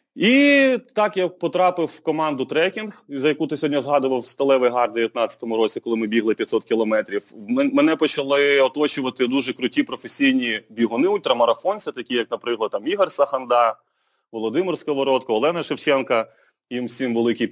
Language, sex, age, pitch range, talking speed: Ukrainian, male, 30-49, 130-195 Hz, 150 wpm